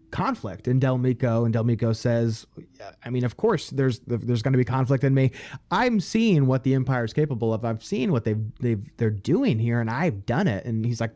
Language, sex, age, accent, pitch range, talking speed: English, male, 30-49, American, 115-140 Hz, 235 wpm